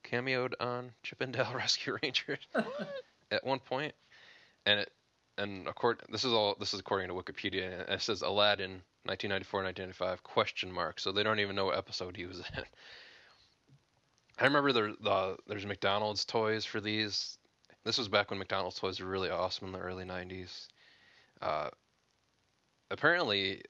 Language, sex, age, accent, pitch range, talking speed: English, male, 20-39, American, 95-105 Hz, 160 wpm